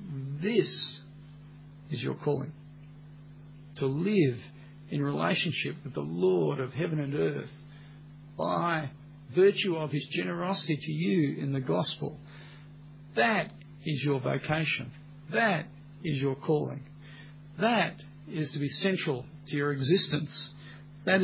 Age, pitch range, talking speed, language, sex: 50-69, 145-155 Hz, 120 wpm, English, male